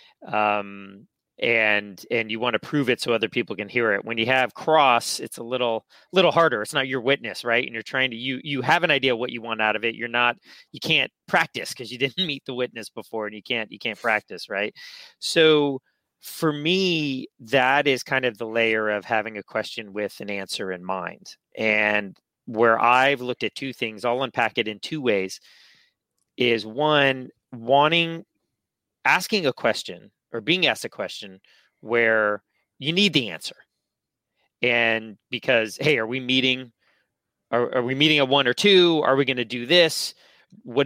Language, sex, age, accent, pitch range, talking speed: English, male, 30-49, American, 115-140 Hz, 190 wpm